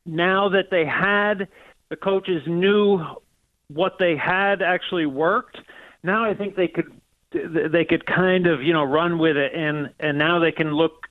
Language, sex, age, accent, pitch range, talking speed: English, male, 40-59, American, 155-185 Hz, 175 wpm